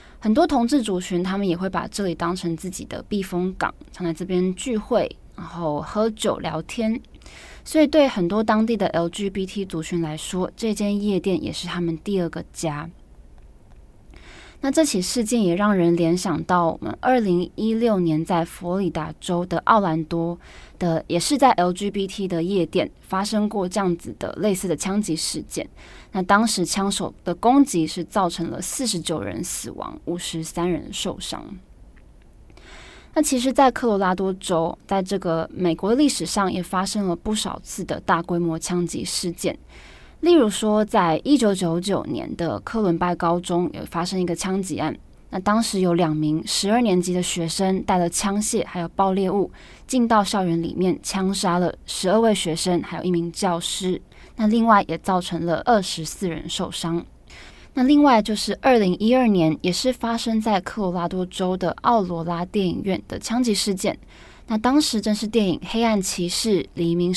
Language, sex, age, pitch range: Chinese, female, 20-39, 170-215 Hz